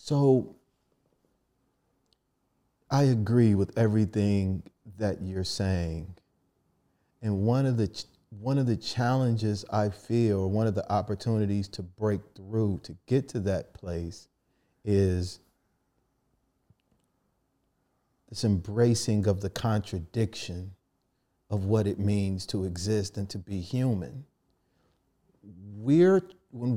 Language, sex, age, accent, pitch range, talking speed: English, male, 40-59, American, 100-130 Hz, 110 wpm